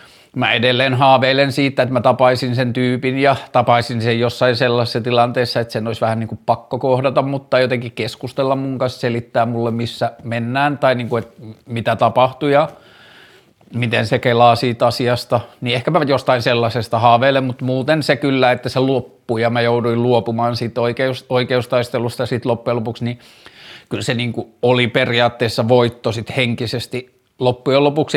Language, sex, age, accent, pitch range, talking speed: Finnish, male, 30-49, native, 115-130 Hz, 170 wpm